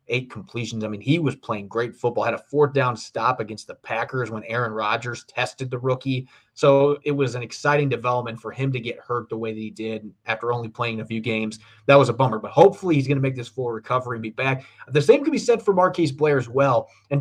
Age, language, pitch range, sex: 30-49, English, 115-140 Hz, male